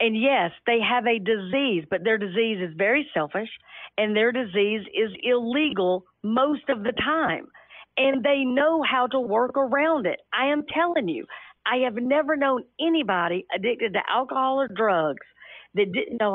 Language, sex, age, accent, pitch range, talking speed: English, female, 50-69, American, 205-275 Hz, 170 wpm